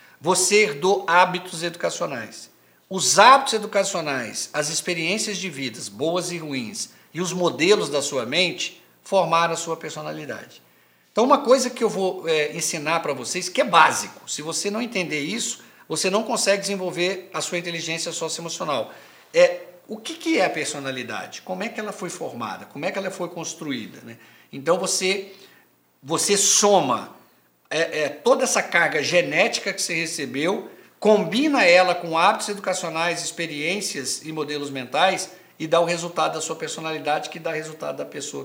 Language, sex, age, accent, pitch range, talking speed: Portuguese, male, 50-69, Brazilian, 155-195 Hz, 160 wpm